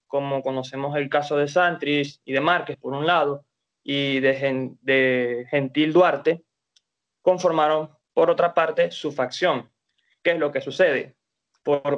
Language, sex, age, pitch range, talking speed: Spanish, male, 20-39, 140-175 Hz, 150 wpm